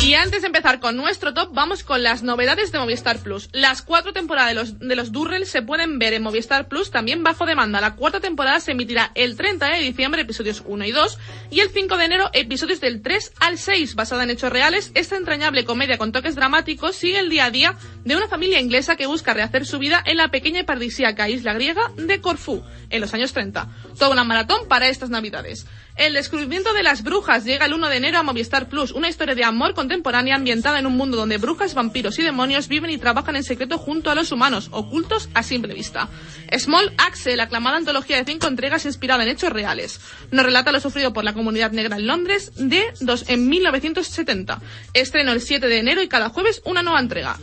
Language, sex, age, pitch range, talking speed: Spanish, female, 30-49, 245-325 Hz, 220 wpm